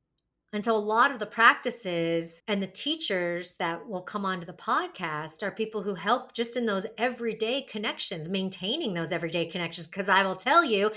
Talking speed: 185 wpm